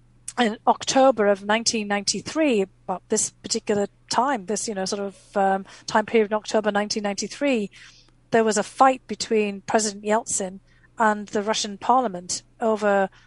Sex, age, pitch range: female, 40-59, 195-230 Hz